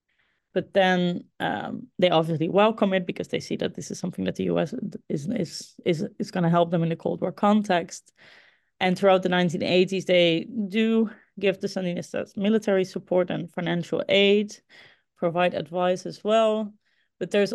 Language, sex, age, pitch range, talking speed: English, female, 30-49, 175-205 Hz, 170 wpm